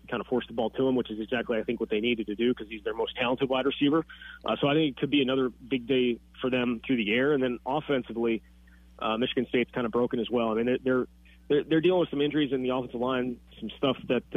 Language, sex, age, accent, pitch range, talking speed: English, male, 30-49, American, 115-140 Hz, 270 wpm